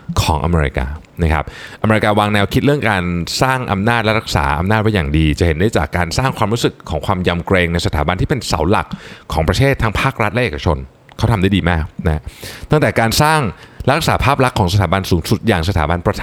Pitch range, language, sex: 90-130 Hz, Thai, male